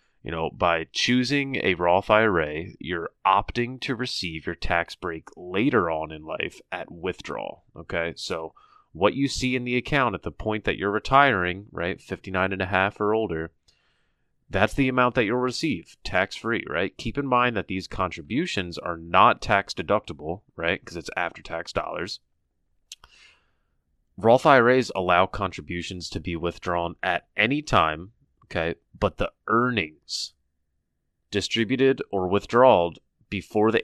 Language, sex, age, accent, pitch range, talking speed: English, male, 30-49, American, 85-115 Hz, 150 wpm